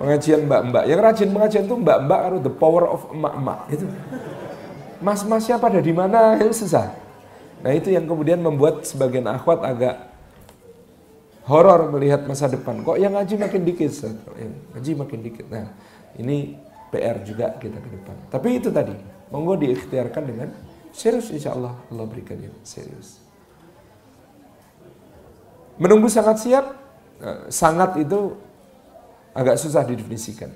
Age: 40-59